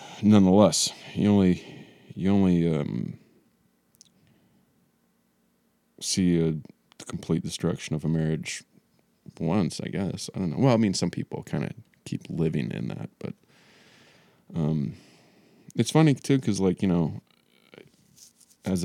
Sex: male